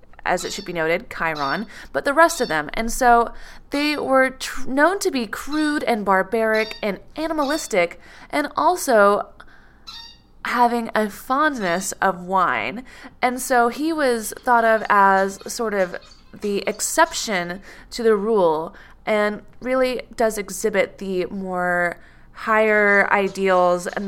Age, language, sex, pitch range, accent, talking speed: 20-39, English, female, 190-275 Hz, American, 130 wpm